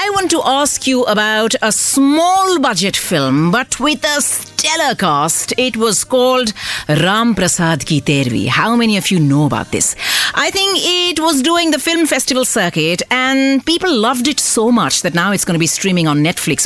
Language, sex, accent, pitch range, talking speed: English, female, Indian, 175-265 Hz, 190 wpm